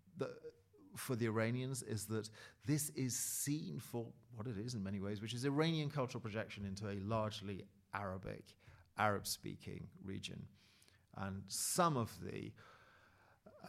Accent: British